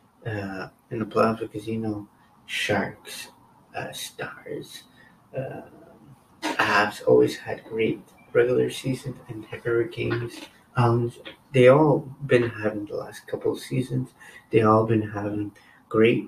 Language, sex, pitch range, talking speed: English, male, 105-130 Hz, 125 wpm